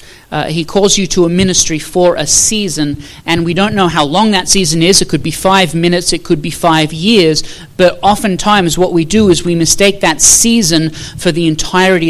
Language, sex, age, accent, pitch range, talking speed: English, male, 30-49, Australian, 160-195 Hz, 210 wpm